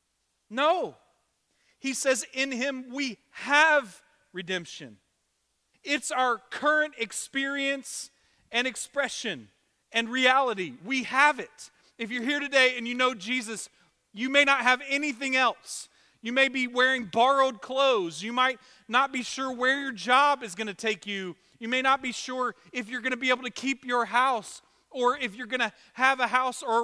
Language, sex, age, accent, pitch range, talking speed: English, male, 40-59, American, 195-260 Hz, 170 wpm